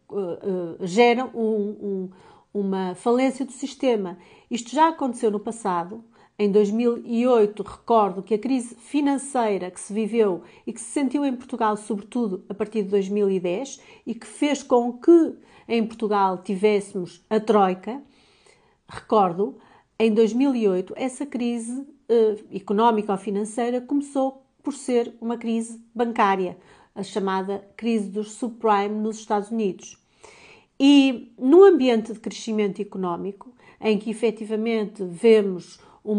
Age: 40-59